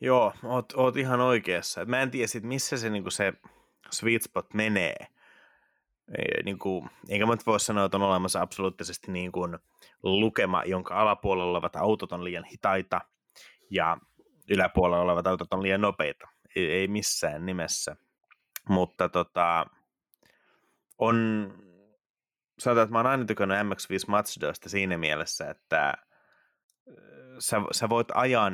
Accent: native